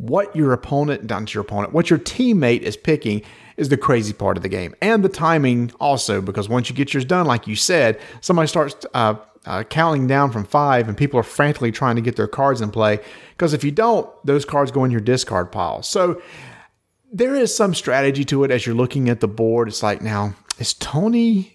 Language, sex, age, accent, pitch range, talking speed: English, male, 40-59, American, 110-145 Hz, 220 wpm